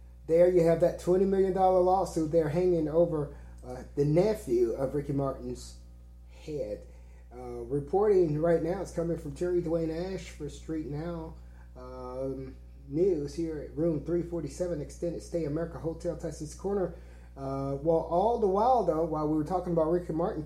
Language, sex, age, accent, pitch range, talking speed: English, male, 30-49, American, 135-180 Hz, 160 wpm